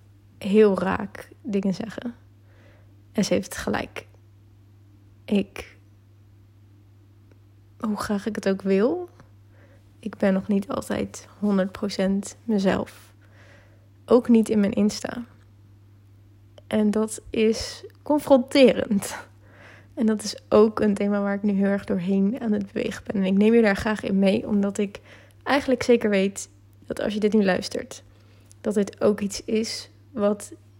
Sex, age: female, 20-39